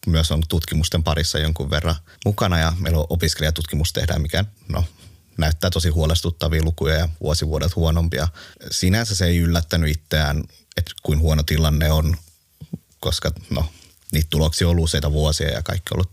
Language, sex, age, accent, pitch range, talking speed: Finnish, male, 30-49, native, 80-90 Hz, 160 wpm